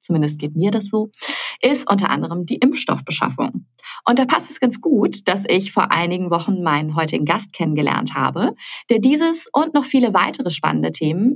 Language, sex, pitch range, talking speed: German, female, 165-240 Hz, 180 wpm